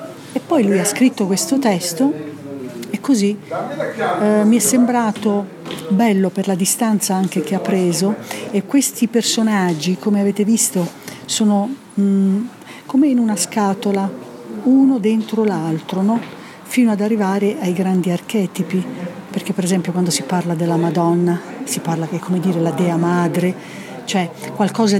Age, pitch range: 50-69, 185-225 Hz